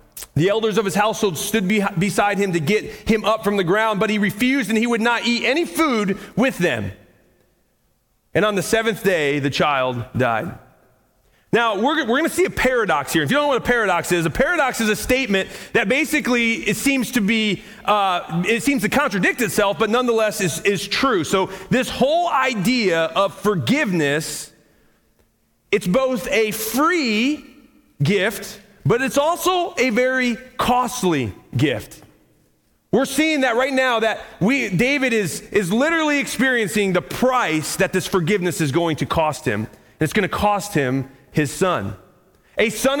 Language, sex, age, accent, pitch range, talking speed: English, male, 40-59, American, 155-235 Hz, 170 wpm